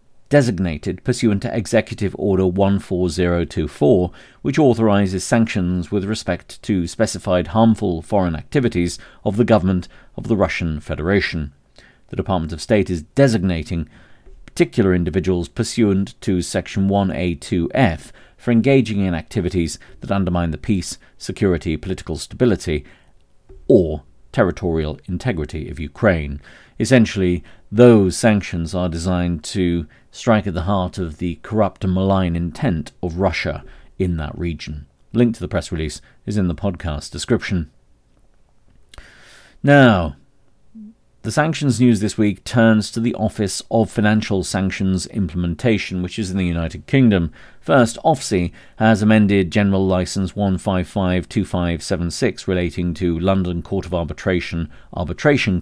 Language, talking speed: English, 125 wpm